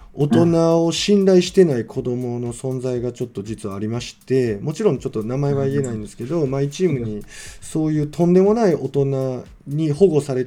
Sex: male